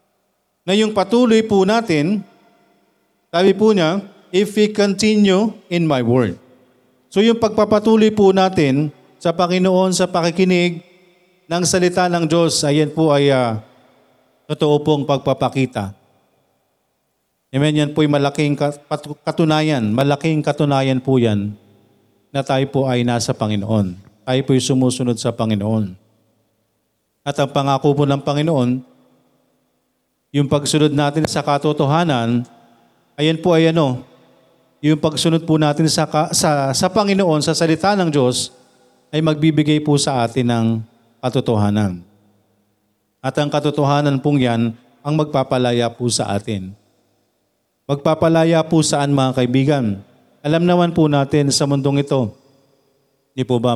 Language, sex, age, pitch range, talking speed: Filipino, male, 40-59, 125-160 Hz, 125 wpm